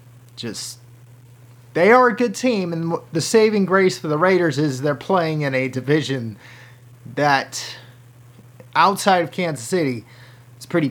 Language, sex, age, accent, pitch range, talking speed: English, male, 30-49, American, 125-170 Hz, 145 wpm